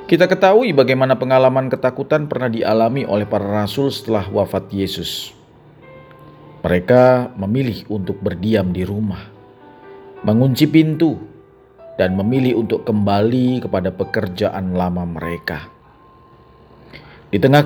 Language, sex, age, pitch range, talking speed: Indonesian, male, 40-59, 100-135 Hz, 105 wpm